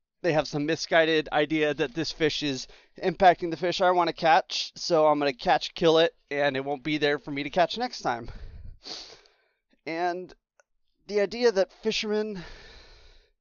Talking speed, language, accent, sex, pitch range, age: 175 wpm, English, American, male, 130-160 Hz, 30-49